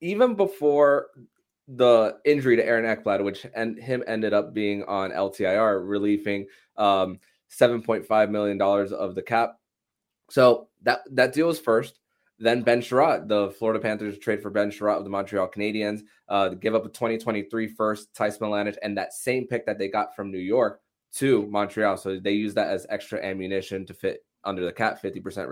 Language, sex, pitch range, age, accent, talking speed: English, male, 100-120 Hz, 20-39, American, 175 wpm